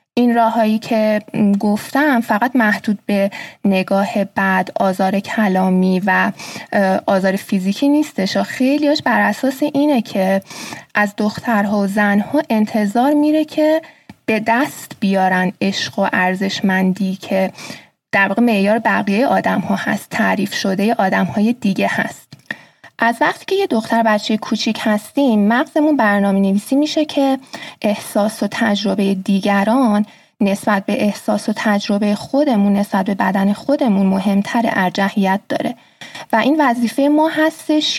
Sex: female